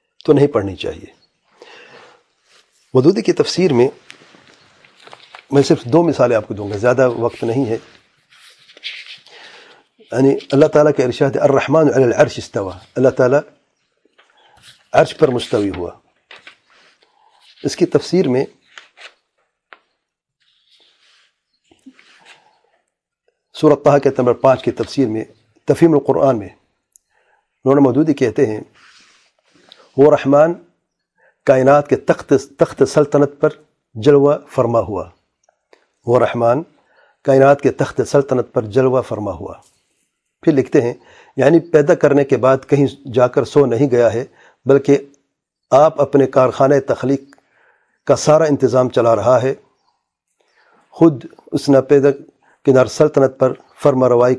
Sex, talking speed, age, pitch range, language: male, 120 wpm, 50-69, 130-150 Hz, English